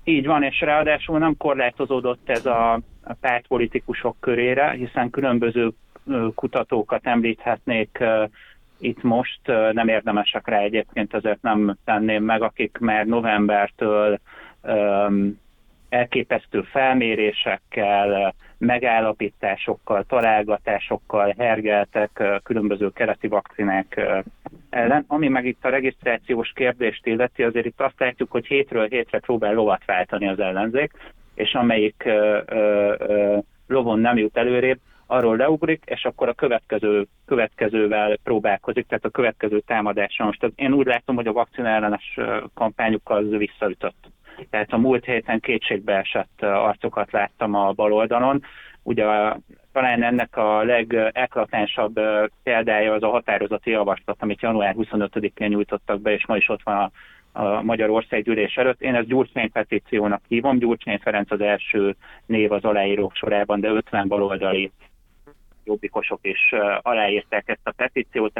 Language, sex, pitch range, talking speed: Hungarian, male, 105-120 Hz, 120 wpm